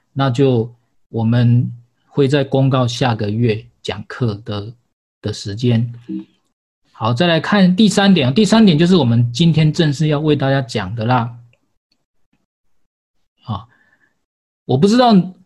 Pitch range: 120-165 Hz